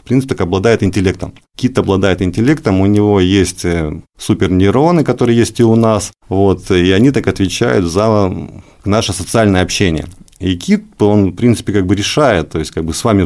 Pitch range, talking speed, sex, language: 90-110 Hz, 175 wpm, male, Russian